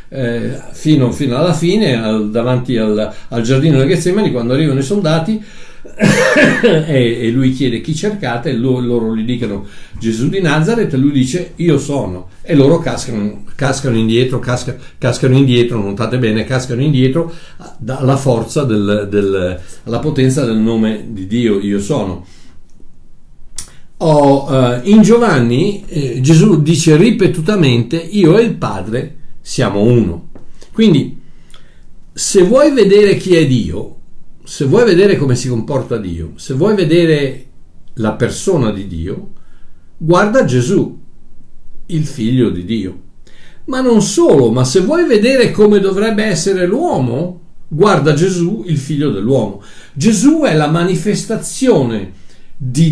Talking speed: 135 wpm